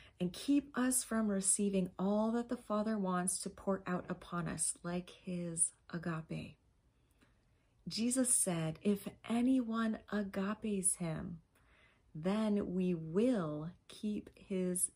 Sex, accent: female, American